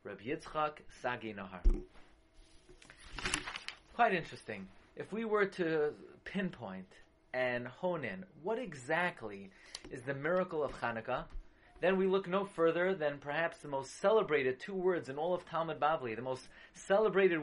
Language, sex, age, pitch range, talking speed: English, male, 30-49, 130-195 Hz, 140 wpm